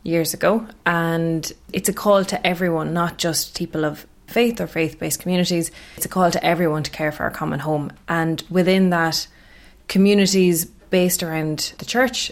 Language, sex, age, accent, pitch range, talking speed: English, female, 20-39, Irish, 155-180 Hz, 170 wpm